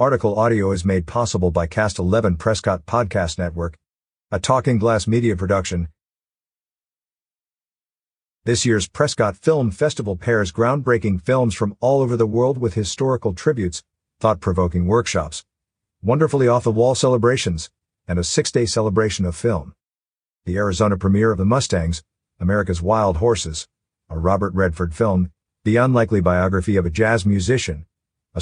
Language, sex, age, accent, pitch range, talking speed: English, male, 50-69, American, 95-115 Hz, 135 wpm